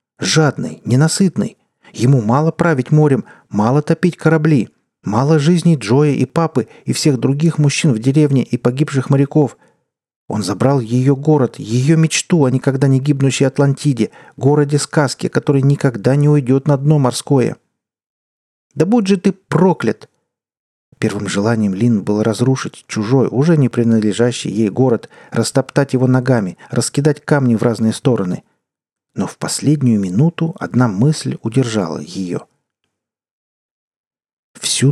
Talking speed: 130 wpm